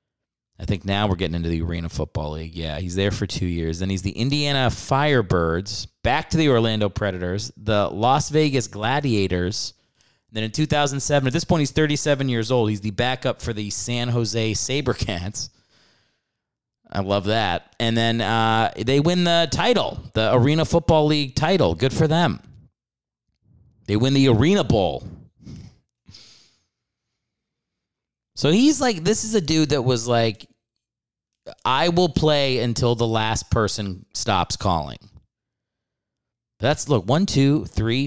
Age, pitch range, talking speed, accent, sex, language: 30-49, 105-140 Hz, 150 wpm, American, male, English